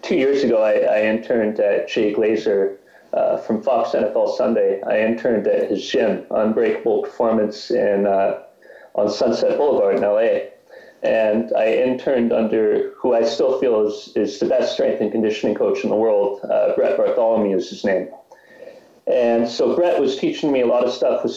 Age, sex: 30-49, male